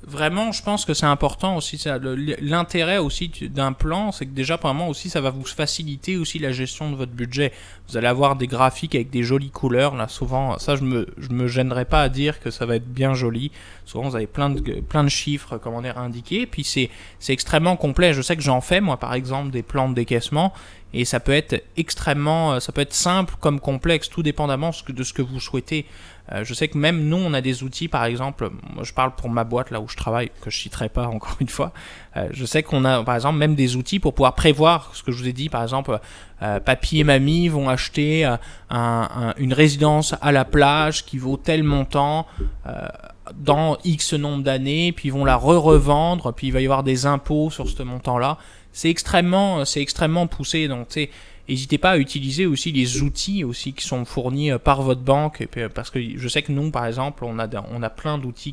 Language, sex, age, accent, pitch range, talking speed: French, male, 20-39, French, 125-155 Hz, 235 wpm